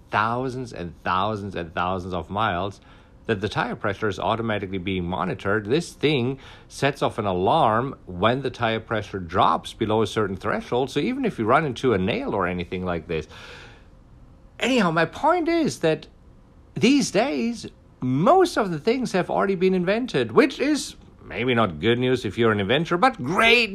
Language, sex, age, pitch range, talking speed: English, male, 50-69, 95-155 Hz, 175 wpm